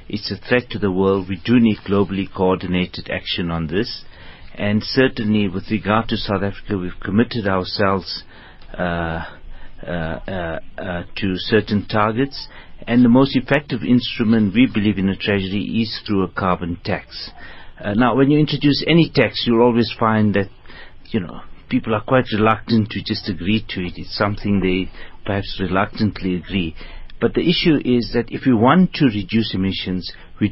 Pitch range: 95-115 Hz